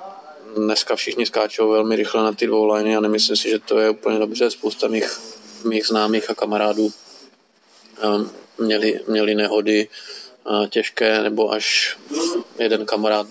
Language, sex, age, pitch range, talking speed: Slovak, male, 20-39, 105-115 Hz, 145 wpm